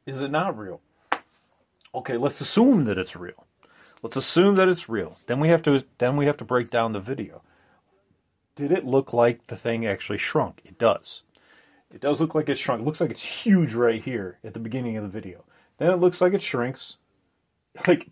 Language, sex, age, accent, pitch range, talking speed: English, male, 30-49, American, 115-160 Hz, 210 wpm